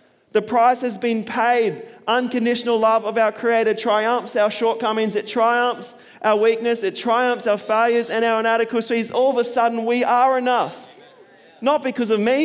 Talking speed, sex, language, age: 170 wpm, male, English, 20-39